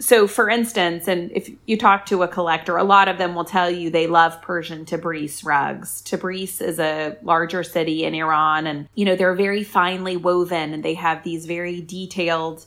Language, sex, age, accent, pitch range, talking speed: English, female, 30-49, American, 165-200 Hz, 200 wpm